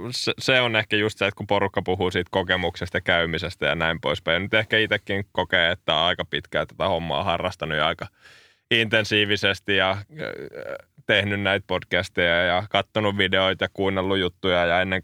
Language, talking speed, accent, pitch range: Finnish, 160 wpm, native, 90-105 Hz